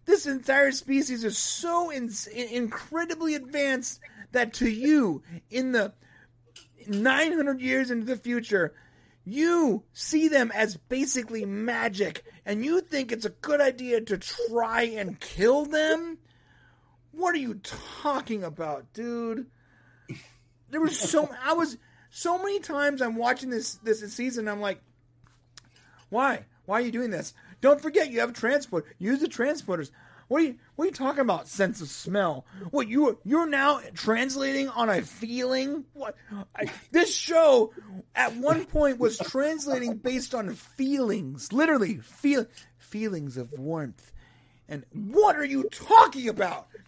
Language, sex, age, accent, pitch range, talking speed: English, male, 30-49, American, 195-285 Hz, 145 wpm